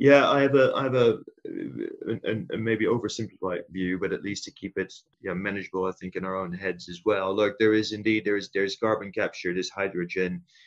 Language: English